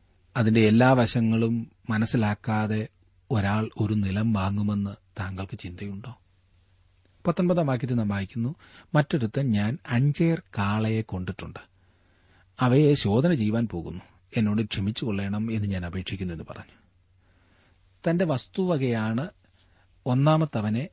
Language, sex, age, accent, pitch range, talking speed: Malayalam, male, 40-59, native, 95-130 Hz, 95 wpm